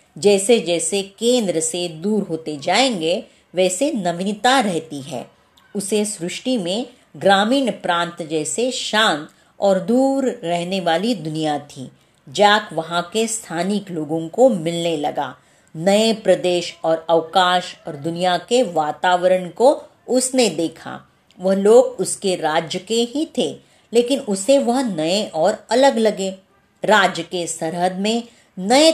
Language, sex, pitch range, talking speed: Marathi, female, 170-240 Hz, 85 wpm